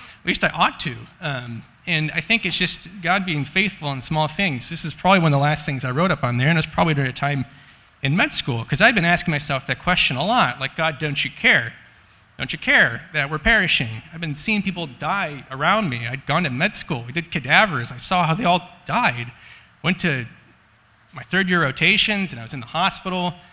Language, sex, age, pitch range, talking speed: English, male, 30-49, 135-180 Hz, 235 wpm